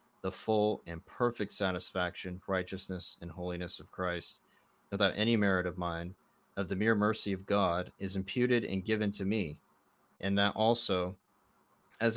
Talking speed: 155 wpm